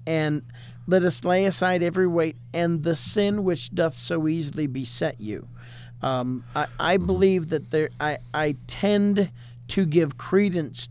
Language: English